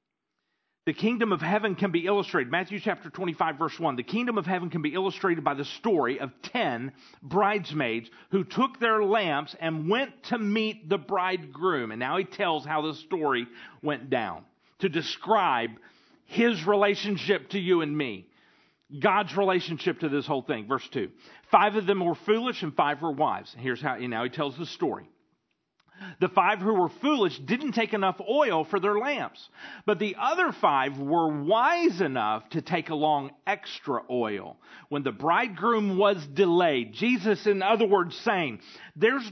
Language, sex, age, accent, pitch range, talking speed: English, male, 40-59, American, 155-220 Hz, 170 wpm